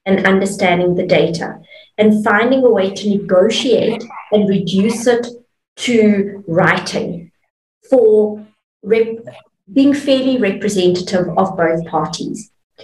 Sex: female